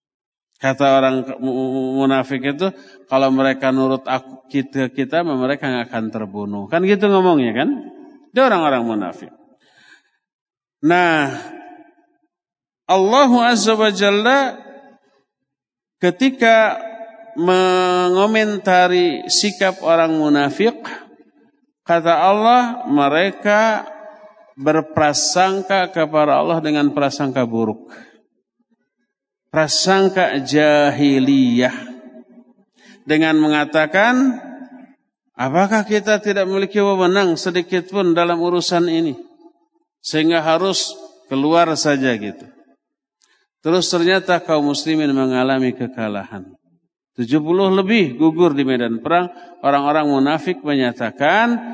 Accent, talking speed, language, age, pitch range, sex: native, 85 wpm, Indonesian, 50-69, 135-215 Hz, male